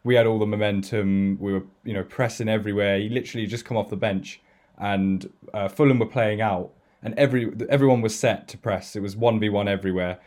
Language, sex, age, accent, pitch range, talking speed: English, male, 10-29, British, 95-115 Hz, 205 wpm